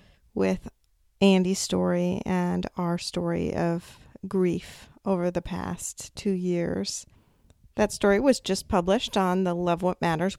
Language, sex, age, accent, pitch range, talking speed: English, female, 40-59, American, 180-210 Hz, 135 wpm